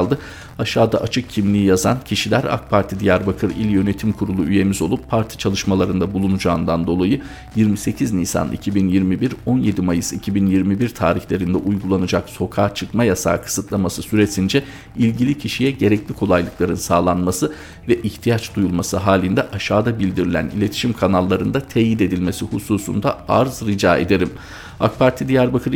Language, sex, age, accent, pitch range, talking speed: Turkish, male, 50-69, native, 95-115 Hz, 120 wpm